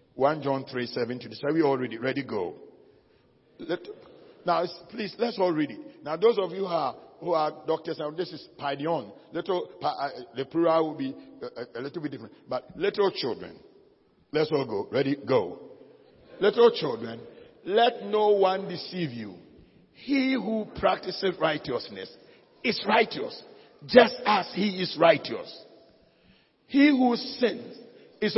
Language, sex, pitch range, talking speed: English, male, 165-245 Hz, 150 wpm